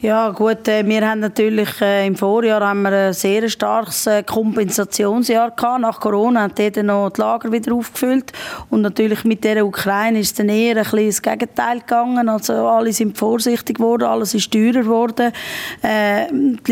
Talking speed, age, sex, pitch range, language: 170 wpm, 20-39, female, 210-230 Hz, German